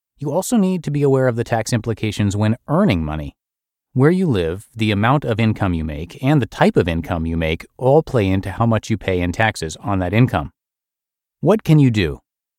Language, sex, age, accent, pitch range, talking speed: English, male, 30-49, American, 90-125 Hz, 215 wpm